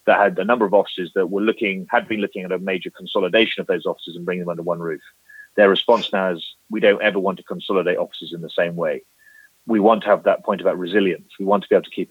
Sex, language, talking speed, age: male, English, 275 wpm, 30-49